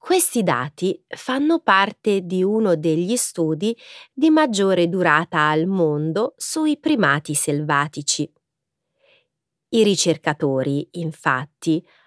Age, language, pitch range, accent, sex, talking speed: 30-49, Italian, 155-235 Hz, native, female, 95 wpm